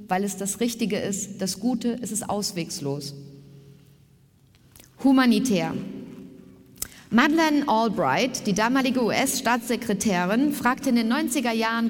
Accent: German